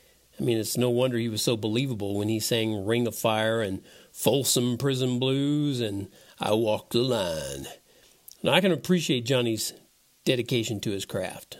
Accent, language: American, English